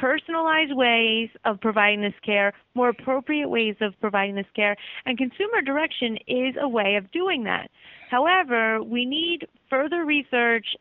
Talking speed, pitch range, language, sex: 150 wpm, 215-265 Hz, English, female